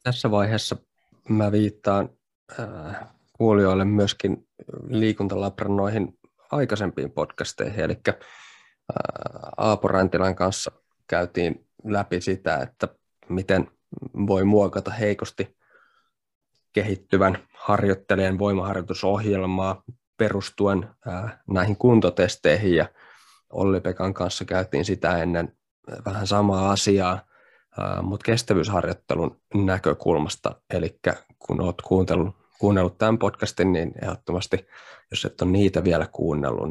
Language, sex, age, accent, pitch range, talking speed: Finnish, male, 20-39, native, 95-110 Hz, 90 wpm